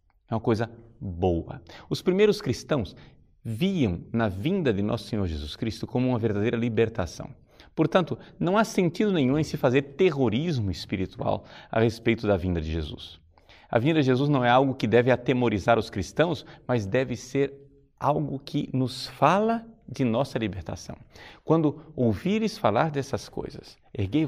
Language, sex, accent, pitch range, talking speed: Portuguese, male, Brazilian, 100-135 Hz, 155 wpm